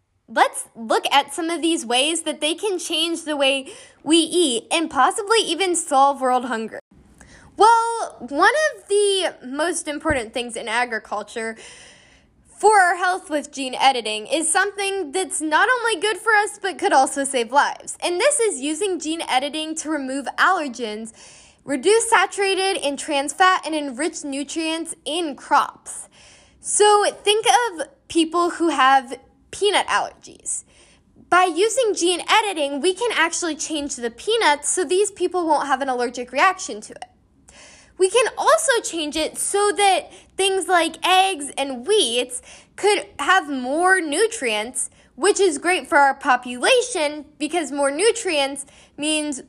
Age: 10-29